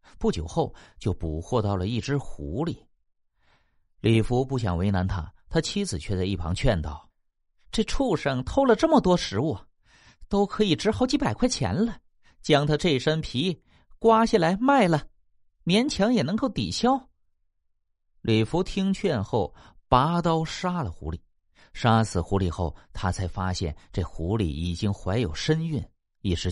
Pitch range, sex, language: 90-150 Hz, male, Chinese